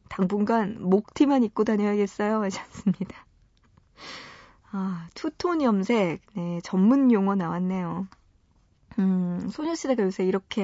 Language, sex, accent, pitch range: Korean, female, native, 190-255 Hz